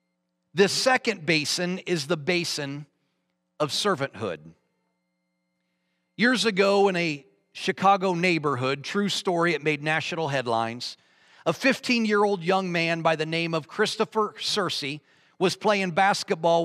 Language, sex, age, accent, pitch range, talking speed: English, male, 40-59, American, 150-200 Hz, 120 wpm